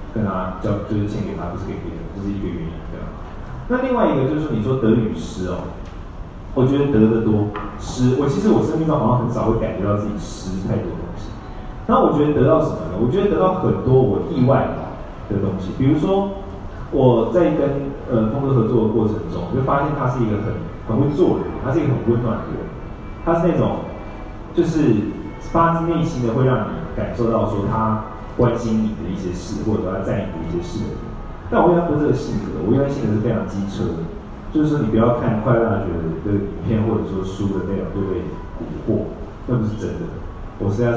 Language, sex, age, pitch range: Chinese, male, 30-49, 95-120 Hz